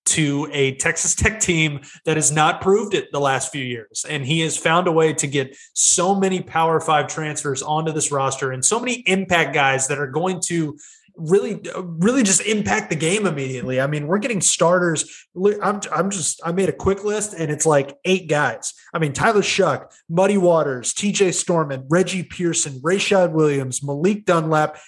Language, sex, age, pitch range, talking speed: English, male, 20-39, 150-190 Hz, 190 wpm